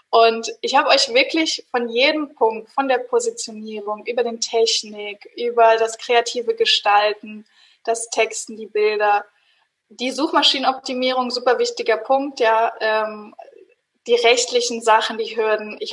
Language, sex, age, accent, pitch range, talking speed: German, female, 20-39, German, 220-280 Hz, 130 wpm